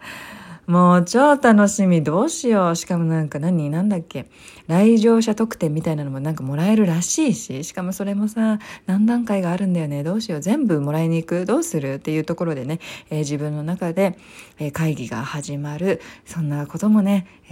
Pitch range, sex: 150-190 Hz, female